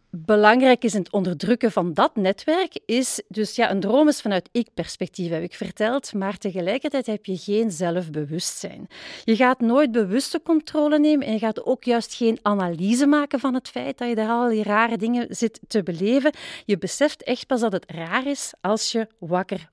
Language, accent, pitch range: Dutch, Dutch, 190-245 Hz